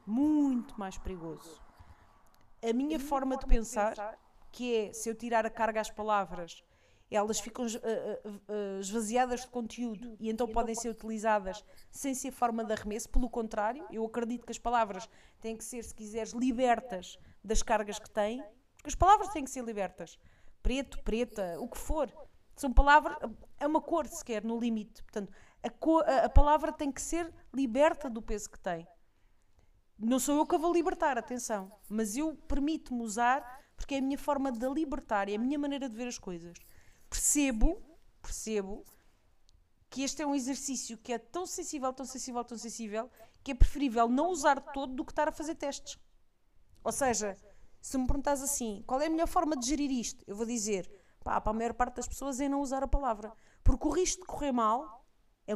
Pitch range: 215-280 Hz